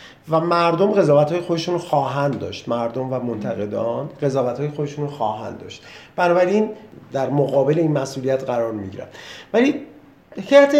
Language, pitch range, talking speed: Persian, 145-190 Hz, 130 wpm